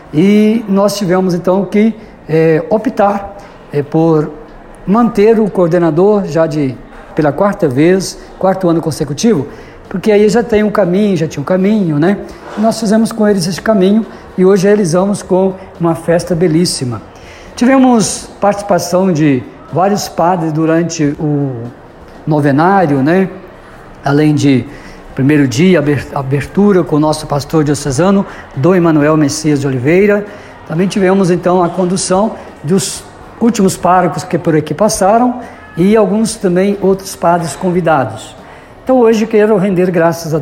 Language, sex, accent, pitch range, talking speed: Portuguese, male, Brazilian, 160-205 Hz, 140 wpm